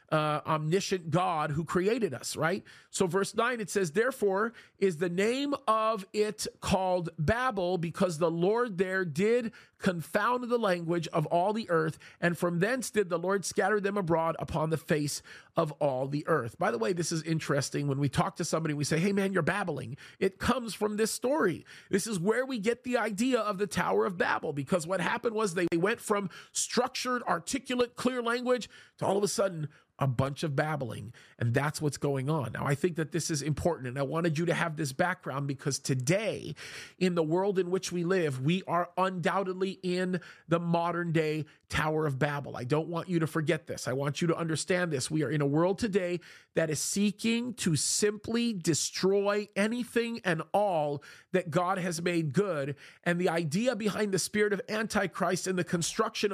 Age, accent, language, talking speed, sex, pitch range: 40-59, American, English, 195 wpm, male, 160-210 Hz